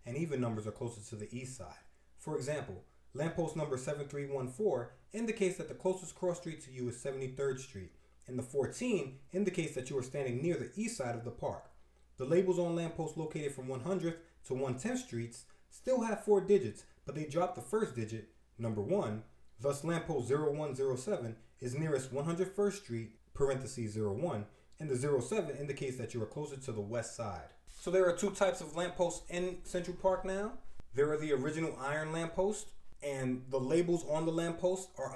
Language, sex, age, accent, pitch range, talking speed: English, male, 30-49, American, 115-165 Hz, 180 wpm